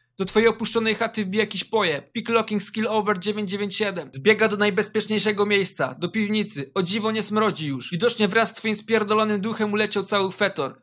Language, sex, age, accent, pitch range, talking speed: Polish, male, 20-39, native, 195-230 Hz, 170 wpm